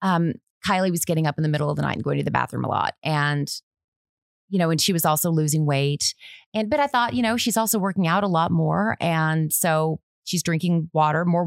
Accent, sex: American, female